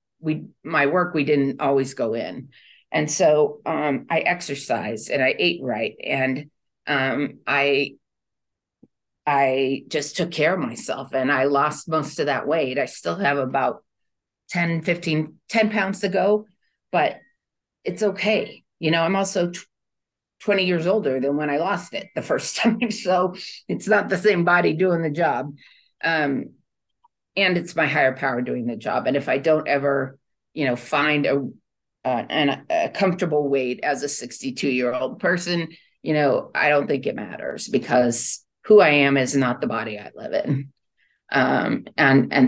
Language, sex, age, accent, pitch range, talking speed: English, female, 40-59, American, 135-185 Hz, 170 wpm